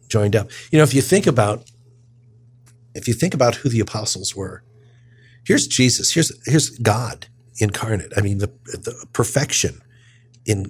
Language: English